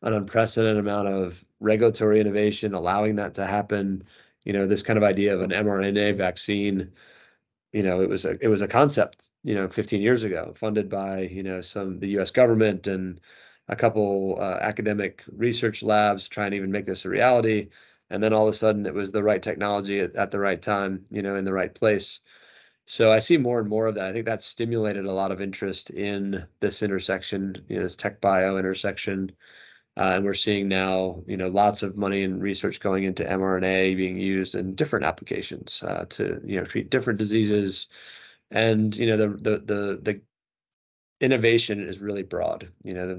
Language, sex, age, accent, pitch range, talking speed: English, male, 20-39, American, 95-110 Hz, 195 wpm